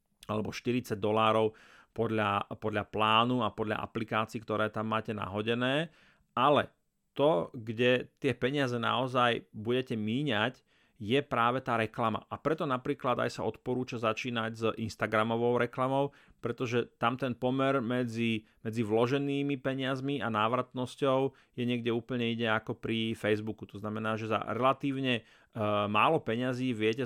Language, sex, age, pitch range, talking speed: Slovak, male, 30-49, 110-130 Hz, 135 wpm